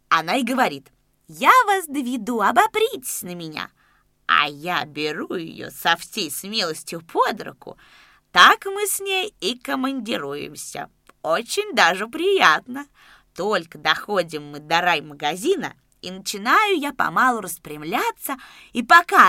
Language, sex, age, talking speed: Russian, female, 20-39, 125 wpm